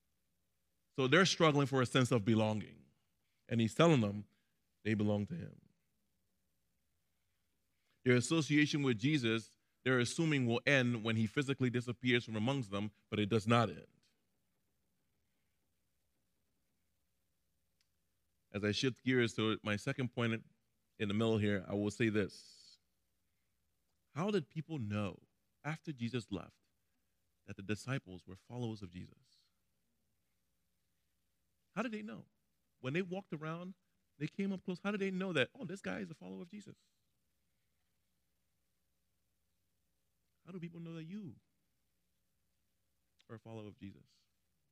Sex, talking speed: male, 135 wpm